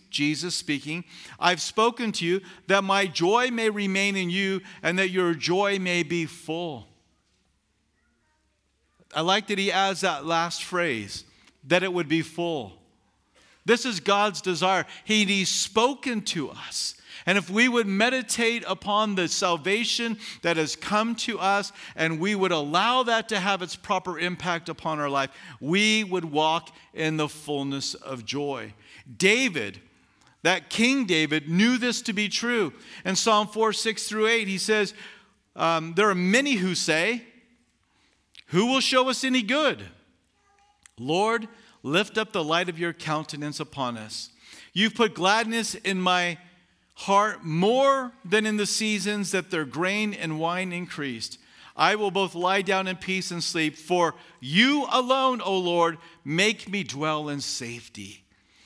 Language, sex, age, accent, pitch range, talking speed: English, male, 50-69, American, 160-215 Hz, 150 wpm